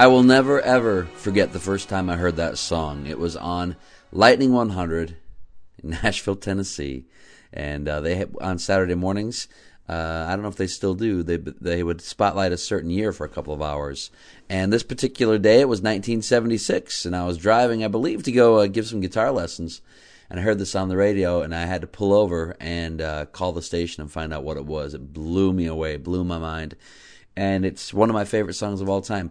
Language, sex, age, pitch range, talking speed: English, male, 40-59, 85-115 Hz, 220 wpm